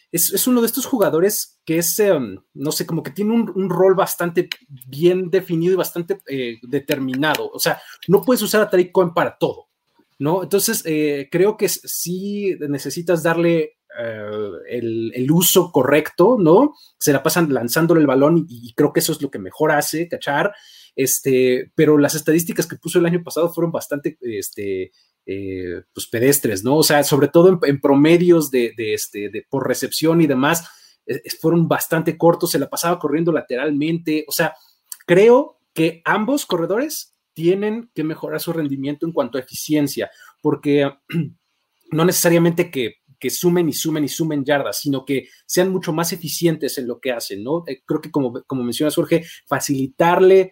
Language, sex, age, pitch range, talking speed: Spanish, male, 30-49, 140-180 Hz, 180 wpm